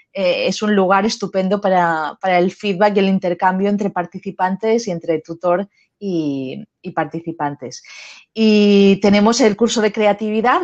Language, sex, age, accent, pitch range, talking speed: Spanish, female, 20-39, Spanish, 180-210 Hz, 140 wpm